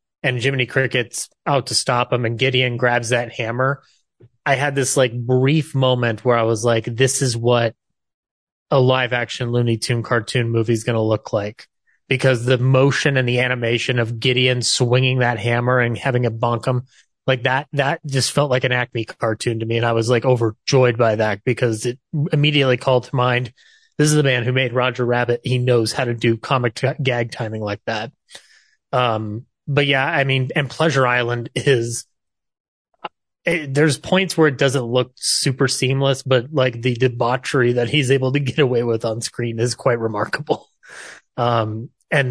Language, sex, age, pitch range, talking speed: English, male, 30-49, 120-135 Hz, 185 wpm